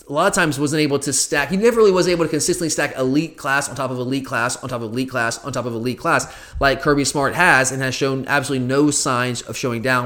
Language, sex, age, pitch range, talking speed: English, male, 20-39, 125-155 Hz, 275 wpm